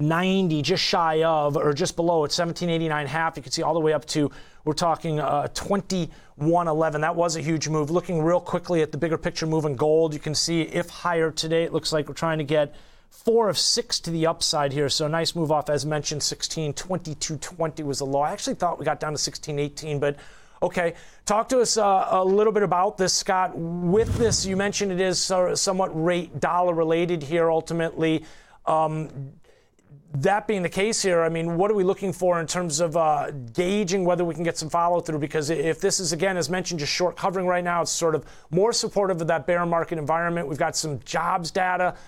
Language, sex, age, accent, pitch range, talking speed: English, male, 30-49, American, 155-185 Hz, 215 wpm